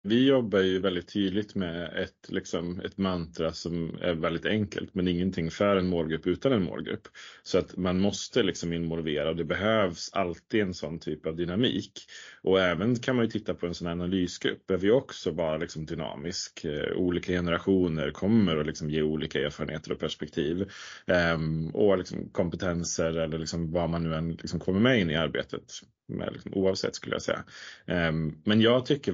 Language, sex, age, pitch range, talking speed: Swedish, male, 30-49, 85-100 Hz, 180 wpm